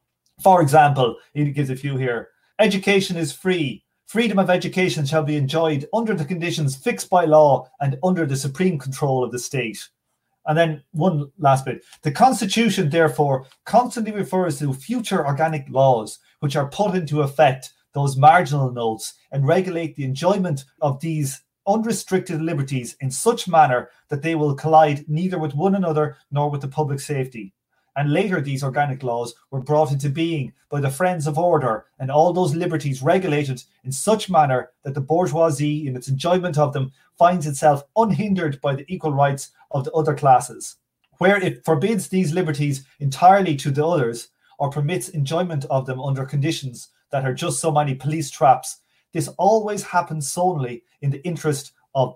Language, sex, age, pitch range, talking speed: English, male, 30-49, 135-170 Hz, 170 wpm